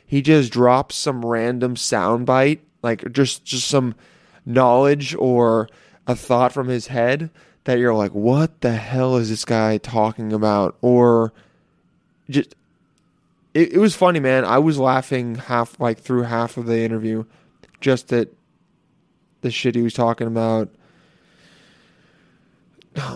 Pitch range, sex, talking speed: 115-145 Hz, male, 140 wpm